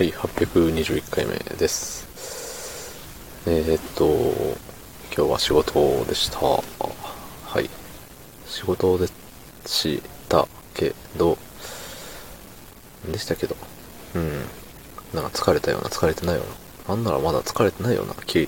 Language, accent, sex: Japanese, native, male